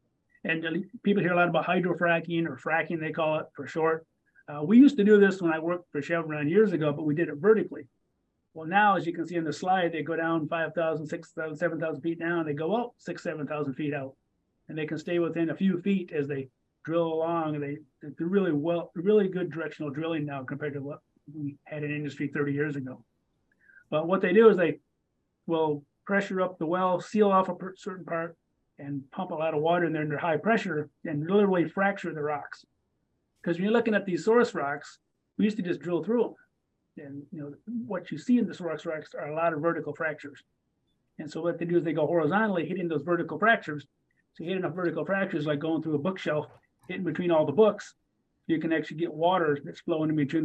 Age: 30-49